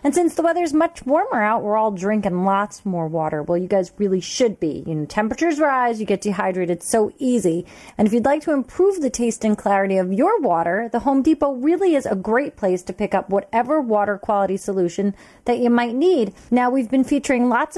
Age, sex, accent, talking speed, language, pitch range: 30-49, female, American, 220 wpm, English, 185-255 Hz